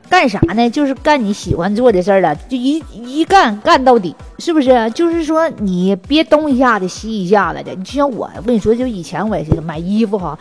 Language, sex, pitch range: Chinese, female, 220-320 Hz